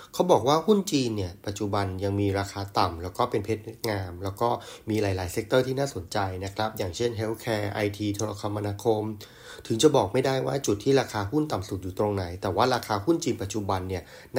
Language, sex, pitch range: Thai, male, 100-120 Hz